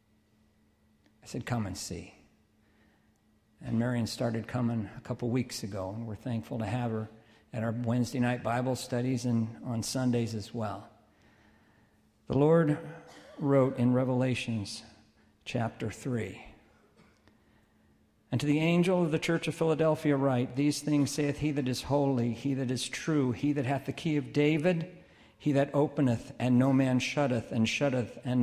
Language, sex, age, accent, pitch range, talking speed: English, male, 50-69, American, 110-145 Hz, 160 wpm